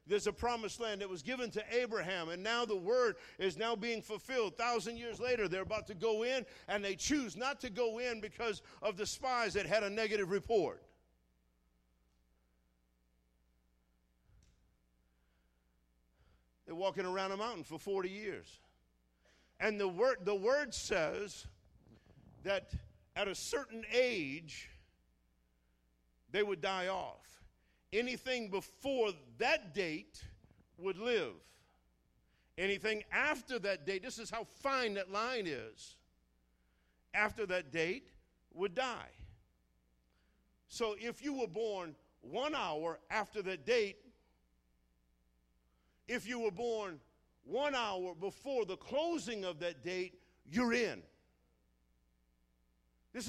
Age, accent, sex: 50-69, American, male